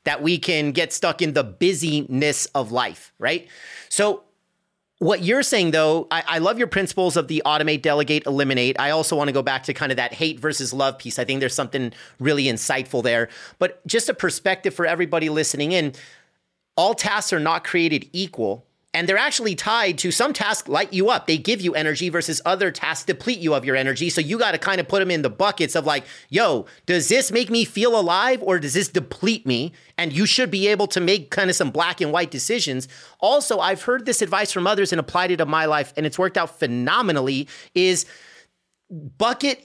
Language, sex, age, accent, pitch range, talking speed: English, male, 30-49, American, 150-205 Hz, 215 wpm